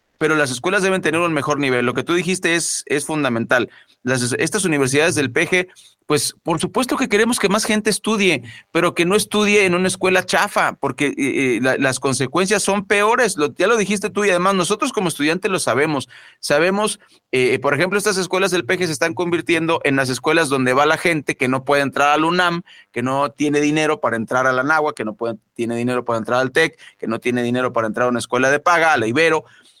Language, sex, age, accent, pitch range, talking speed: Spanish, male, 40-59, Mexican, 130-190 Hz, 225 wpm